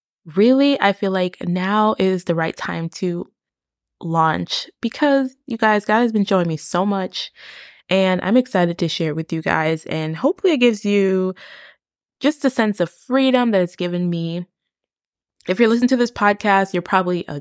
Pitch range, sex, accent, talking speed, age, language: 165-215 Hz, female, American, 180 wpm, 20-39, English